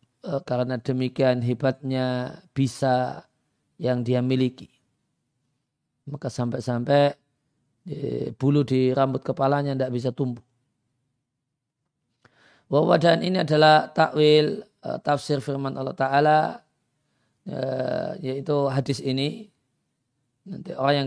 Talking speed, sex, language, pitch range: 85 wpm, male, Indonesian, 130-145 Hz